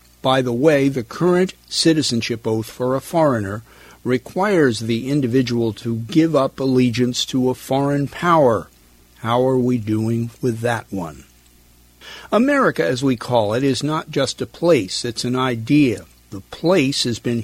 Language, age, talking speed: English, 50-69, 155 wpm